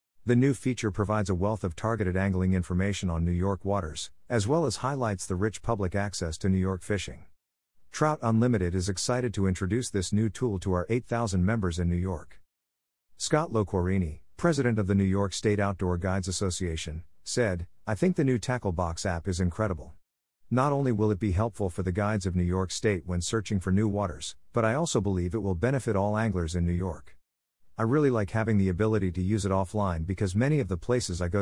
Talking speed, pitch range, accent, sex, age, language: 210 wpm, 90-110 Hz, American, male, 50-69, English